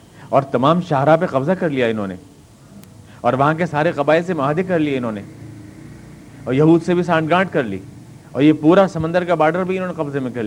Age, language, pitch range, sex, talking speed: 50-69, Urdu, 115-155 Hz, male, 230 wpm